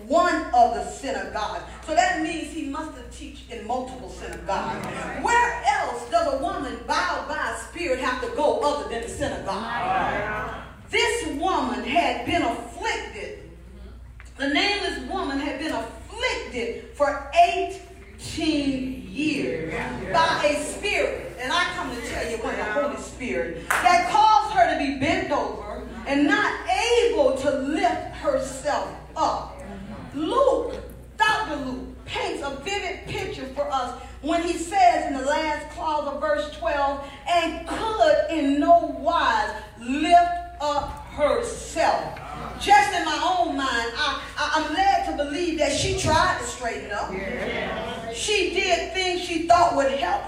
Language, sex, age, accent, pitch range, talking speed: English, female, 40-59, American, 285-365 Hz, 145 wpm